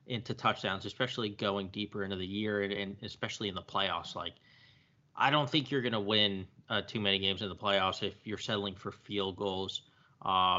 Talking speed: 200 wpm